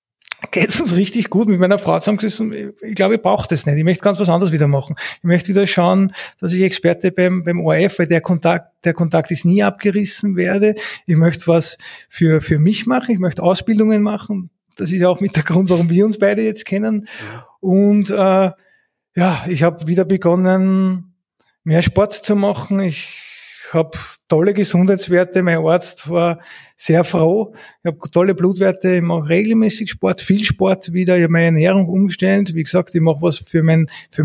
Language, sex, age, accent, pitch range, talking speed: German, male, 30-49, Austrian, 170-195 Hz, 190 wpm